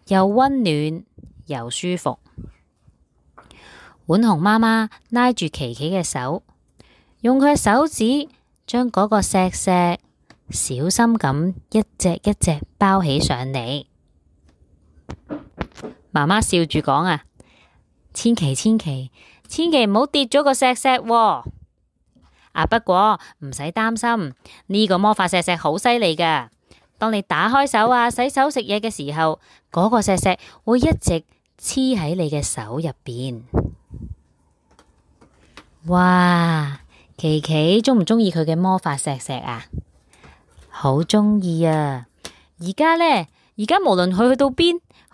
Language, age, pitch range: Chinese, 20-39, 150-230 Hz